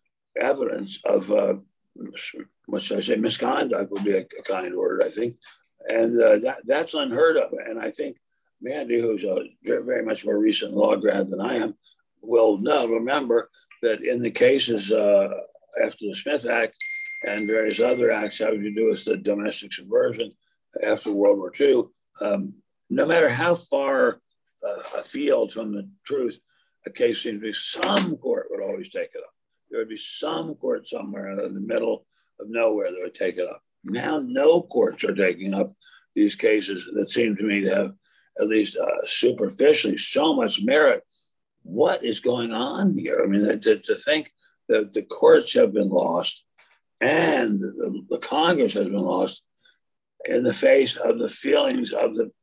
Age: 60-79